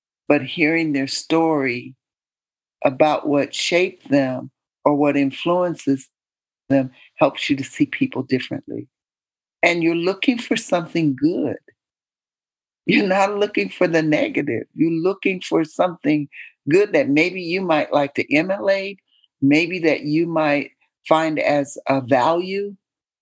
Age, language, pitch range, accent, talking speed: 60-79, English, 135-180 Hz, American, 130 wpm